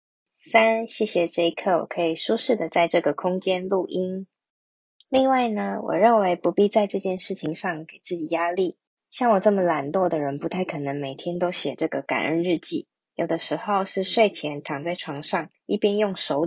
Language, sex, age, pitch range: Chinese, female, 20-39, 160-200 Hz